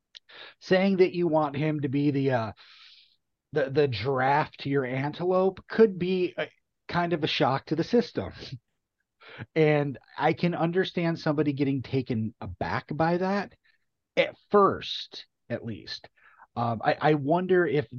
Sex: male